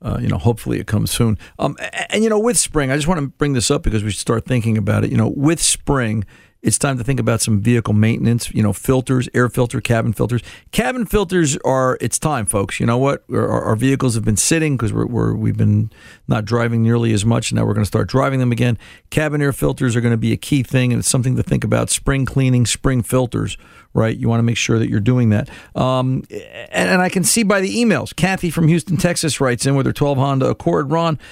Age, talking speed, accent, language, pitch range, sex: 50-69, 250 wpm, American, English, 115-145 Hz, male